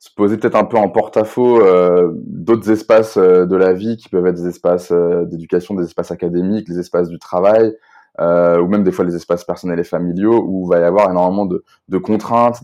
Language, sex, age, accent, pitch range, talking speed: French, male, 20-39, French, 90-110 Hz, 225 wpm